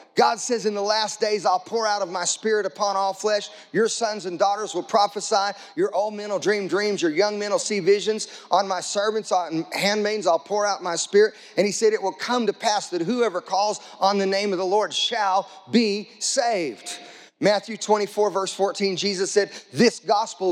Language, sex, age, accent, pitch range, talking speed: English, male, 30-49, American, 195-240 Hz, 210 wpm